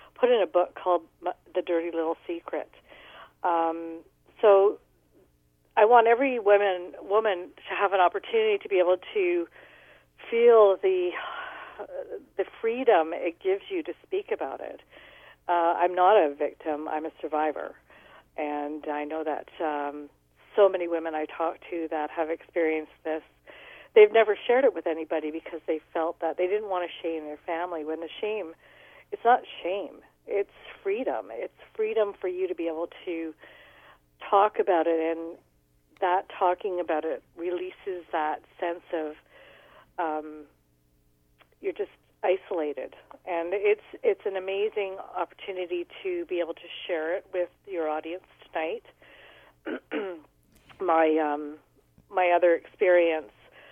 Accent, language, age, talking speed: American, English, 50-69, 145 wpm